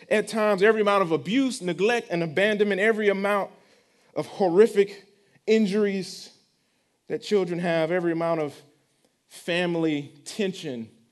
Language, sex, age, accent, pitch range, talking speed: English, male, 30-49, American, 155-225 Hz, 120 wpm